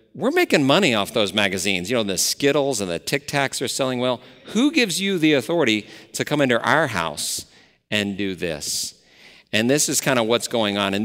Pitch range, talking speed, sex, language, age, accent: 105-140 Hz, 210 wpm, male, English, 50-69, American